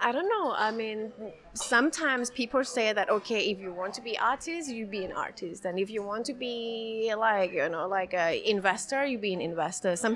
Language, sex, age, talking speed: English, female, 30-49, 220 wpm